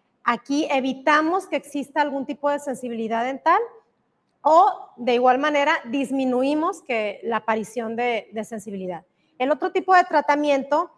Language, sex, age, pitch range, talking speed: Spanish, female, 30-49, 250-325 Hz, 135 wpm